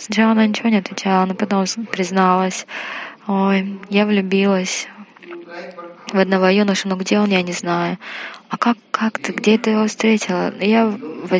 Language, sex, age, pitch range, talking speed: Russian, female, 20-39, 180-210 Hz, 160 wpm